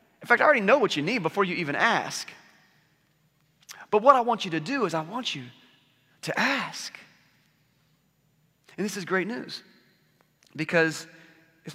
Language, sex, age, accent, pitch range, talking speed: English, male, 30-49, American, 150-185 Hz, 165 wpm